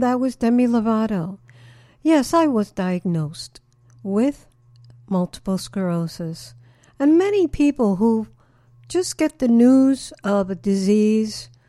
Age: 60-79